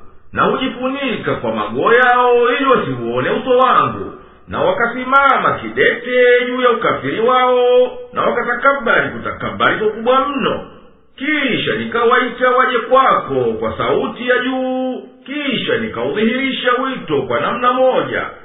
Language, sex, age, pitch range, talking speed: Swahili, male, 50-69, 240-255 Hz, 115 wpm